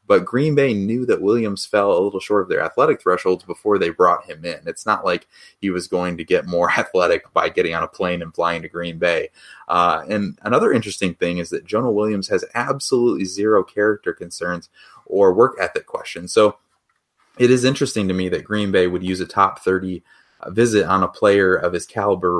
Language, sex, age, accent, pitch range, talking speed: English, male, 30-49, American, 90-110 Hz, 210 wpm